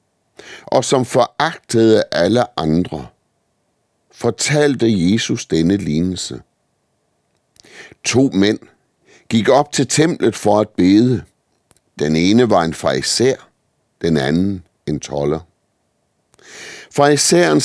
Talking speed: 95 wpm